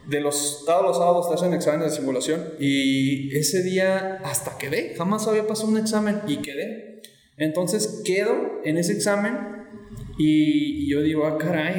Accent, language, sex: Mexican, Spanish, male